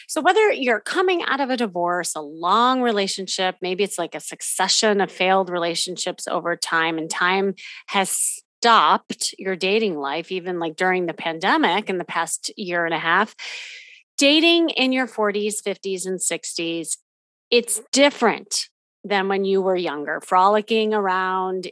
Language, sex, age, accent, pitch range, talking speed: English, female, 30-49, American, 175-235 Hz, 155 wpm